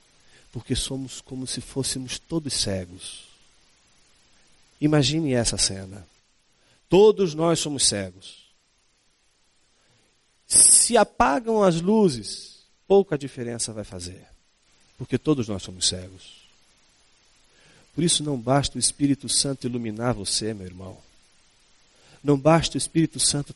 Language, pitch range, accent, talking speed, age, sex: Portuguese, 95-130 Hz, Brazilian, 110 wpm, 40-59, male